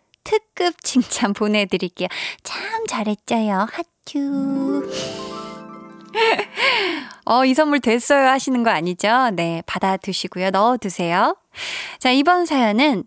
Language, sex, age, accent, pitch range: Korean, female, 20-39, native, 205-310 Hz